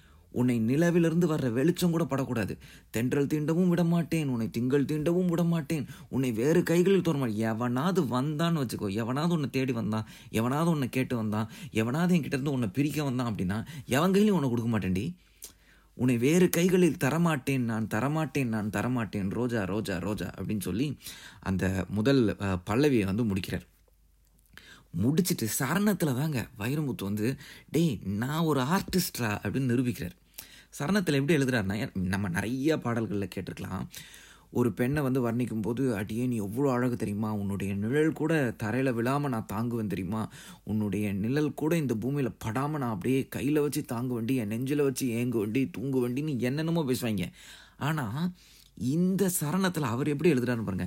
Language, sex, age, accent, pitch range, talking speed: Tamil, male, 30-49, native, 110-160 Hz, 145 wpm